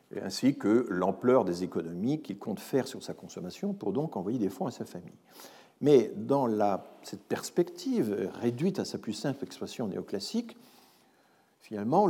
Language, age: French, 50-69